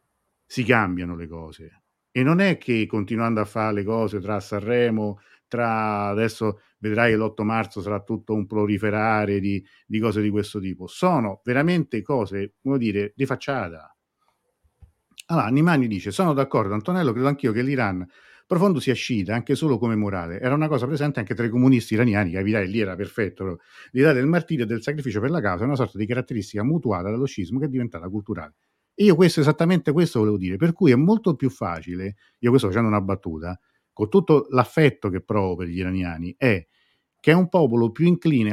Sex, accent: male, native